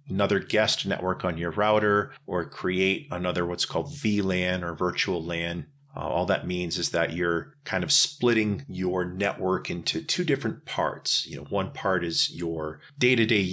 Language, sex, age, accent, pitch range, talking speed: English, male, 40-59, American, 90-115 Hz, 170 wpm